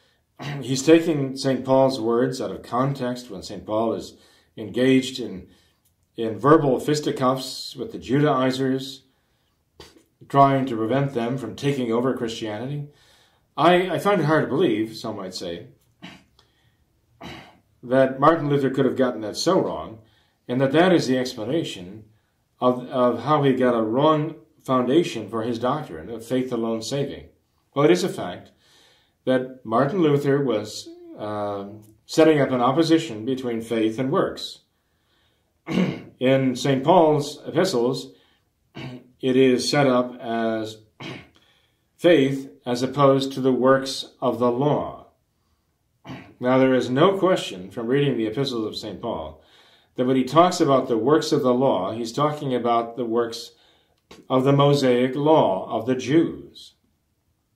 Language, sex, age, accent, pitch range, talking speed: English, male, 40-59, American, 115-140 Hz, 145 wpm